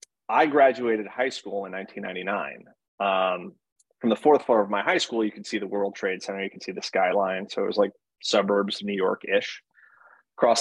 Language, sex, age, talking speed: English, male, 30-49, 205 wpm